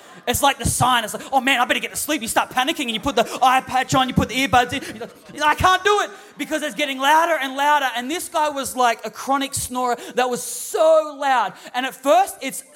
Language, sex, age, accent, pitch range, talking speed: English, male, 30-49, Australian, 235-300 Hz, 265 wpm